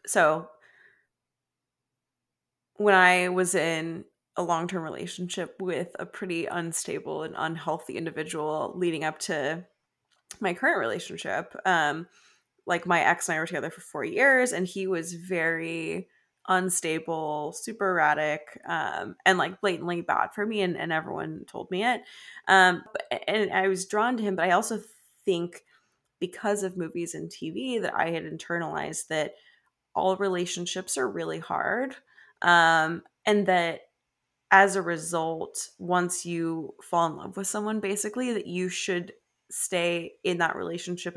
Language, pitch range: English, 165-200 Hz